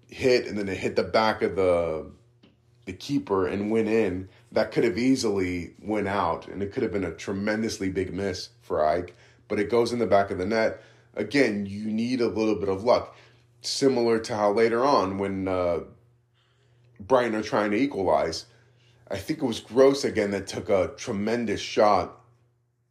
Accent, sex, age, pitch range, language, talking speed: American, male, 30-49, 100-120 Hz, English, 185 wpm